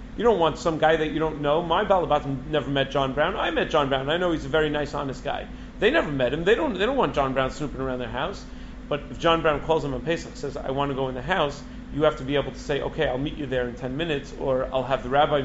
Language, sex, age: English, male, 40-59